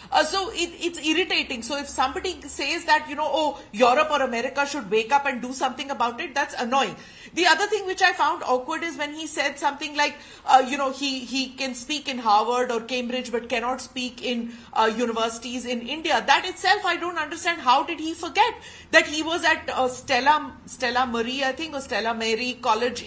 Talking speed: 210 wpm